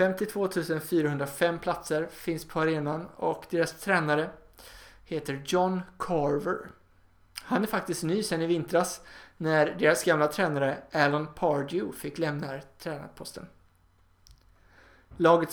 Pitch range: 145-180 Hz